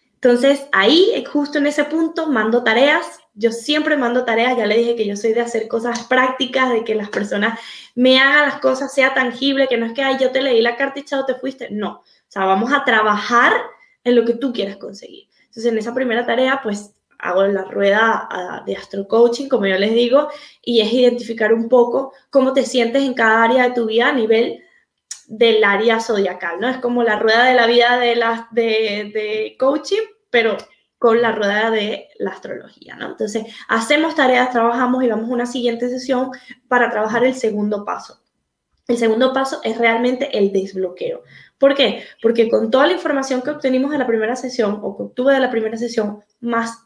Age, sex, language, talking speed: 10-29, female, Spanish, 200 wpm